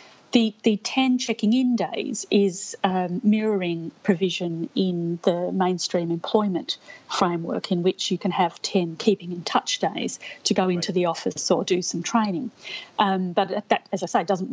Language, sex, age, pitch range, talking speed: English, female, 40-59, 175-205 Hz, 155 wpm